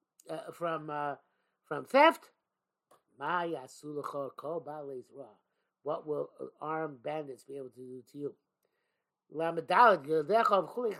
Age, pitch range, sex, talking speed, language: 50-69, 165-230 Hz, male, 80 wpm, English